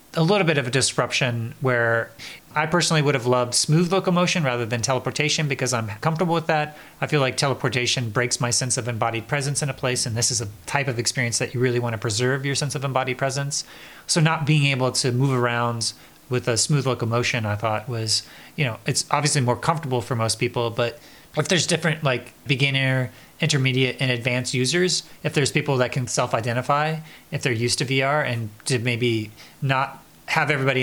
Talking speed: 200 wpm